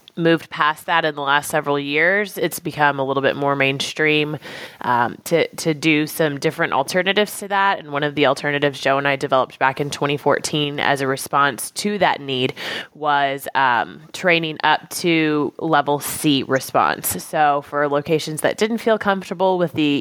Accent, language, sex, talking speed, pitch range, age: American, English, female, 175 wpm, 145-175 Hz, 20-39